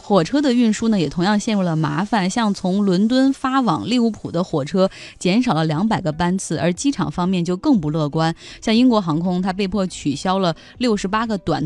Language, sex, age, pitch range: Chinese, female, 20-39, 160-220 Hz